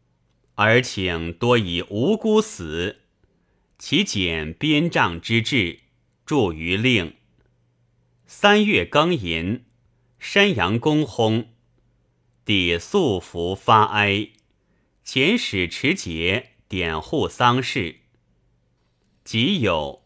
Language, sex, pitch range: Chinese, male, 85-130 Hz